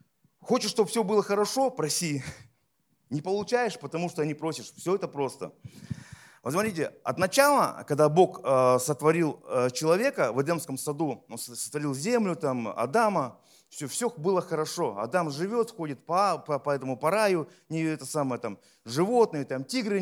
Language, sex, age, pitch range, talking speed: Russian, male, 30-49, 155-220 Hz, 150 wpm